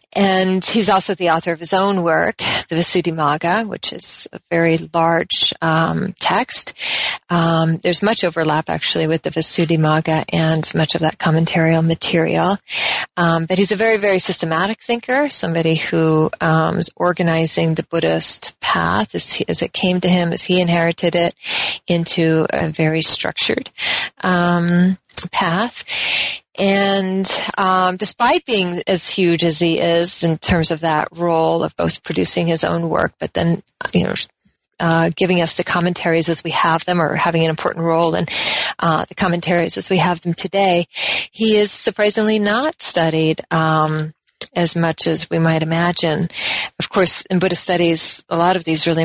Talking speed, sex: 165 wpm, female